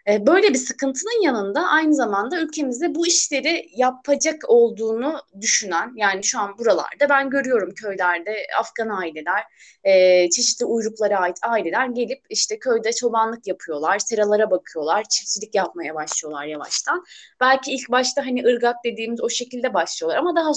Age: 20-39